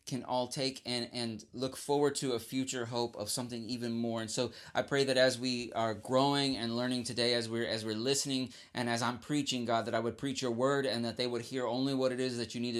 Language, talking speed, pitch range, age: English, 260 wpm, 120-150 Hz, 30-49